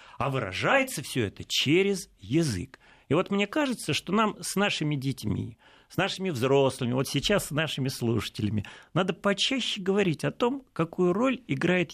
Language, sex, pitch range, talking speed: Russian, male, 120-190 Hz, 155 wpm